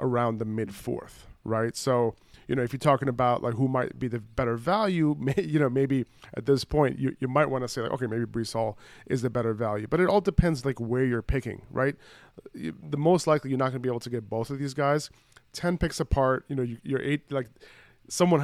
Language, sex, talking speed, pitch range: English, male, 245 wpm, 115-140 Hz